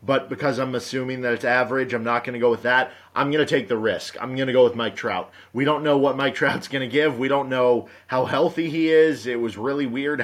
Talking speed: 275 wpm